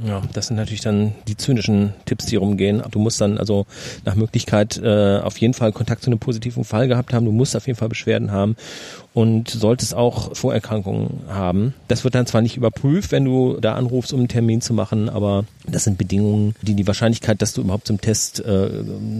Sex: male